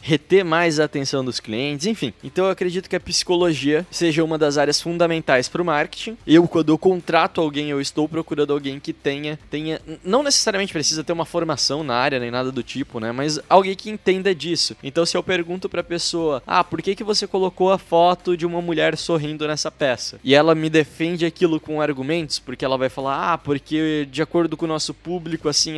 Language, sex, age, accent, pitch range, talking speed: Portuguese, male, 20-39, Brazilian, 145-170 Hz, 215 wpm